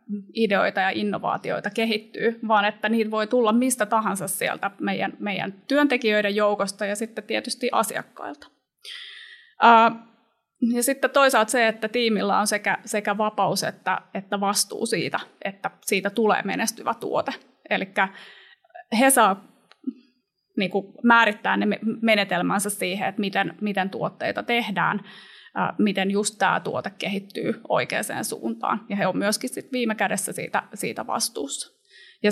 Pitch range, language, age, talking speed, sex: 200-230 Hz, Finnish, 30-49, 125 wpm, female